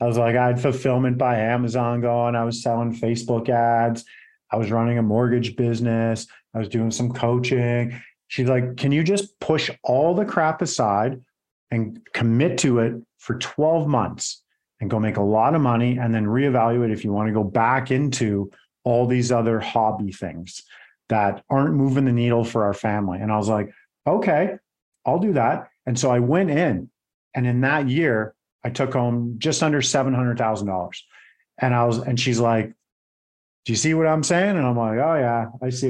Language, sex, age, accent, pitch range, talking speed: English, male, 40-59, American, 115-140 Hz, 195 wpm